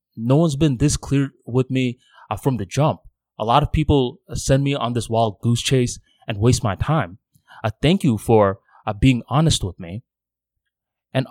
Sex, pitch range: male, 110-130 Hz